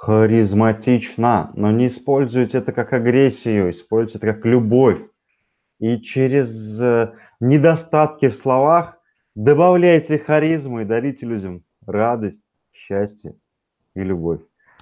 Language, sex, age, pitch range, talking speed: Russian, male, 20-39, 100-125 Hz, 100 wpm